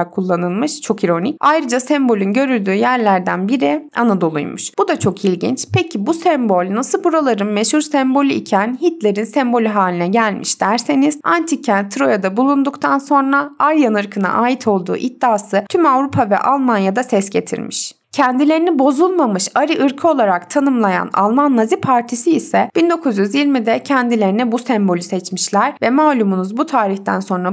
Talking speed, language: 135 wpm, Turkish